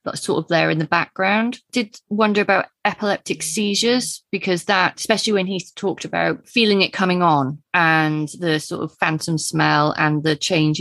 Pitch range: 155-200 Hz